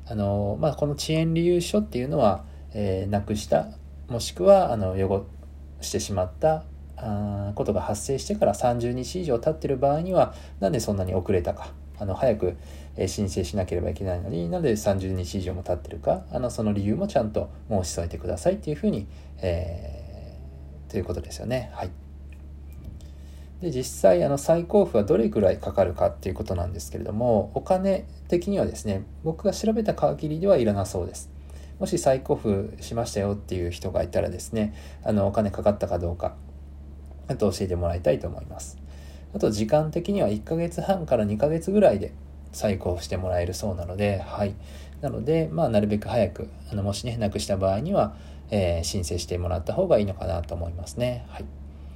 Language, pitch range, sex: Japanese, 75-120 Hz, male